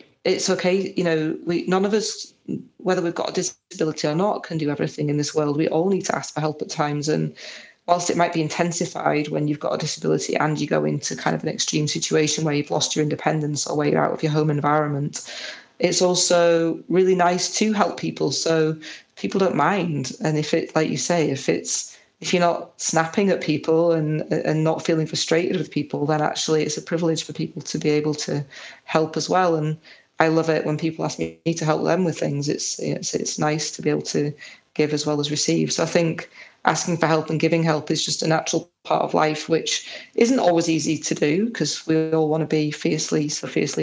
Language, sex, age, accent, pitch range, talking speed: English, female, 30-49, British, 150-170 Hz, 225 wpm